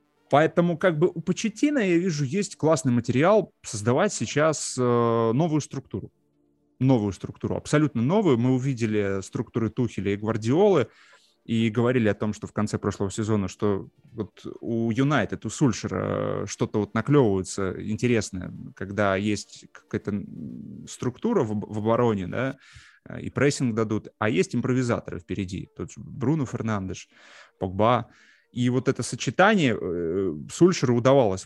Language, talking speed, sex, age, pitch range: Russian, 130 wpm, male, 20-39, 105-155 Hz